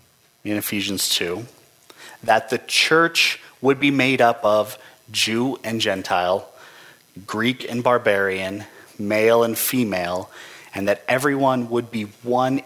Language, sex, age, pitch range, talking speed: English, male, 30-49, 105-125 Hz, 125 wpm